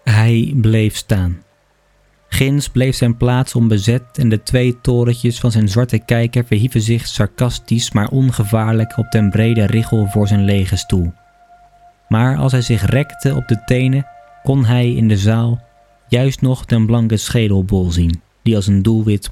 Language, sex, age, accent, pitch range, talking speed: Dutch, male, 20-39, Dutch, 100-120 Hz, 160 wpm